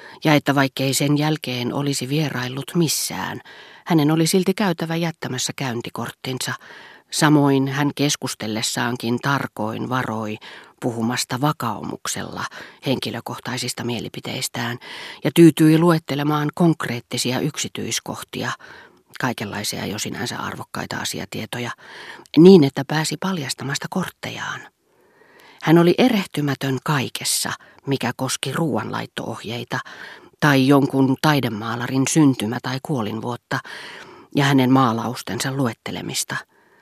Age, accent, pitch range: 40-59, native, 125-155 Hz